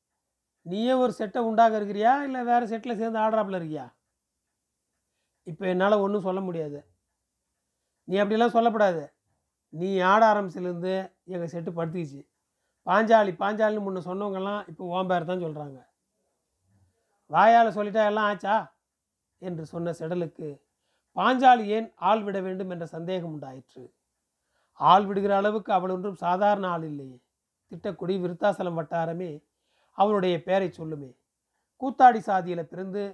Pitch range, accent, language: 165-210 Hz, native, Tamil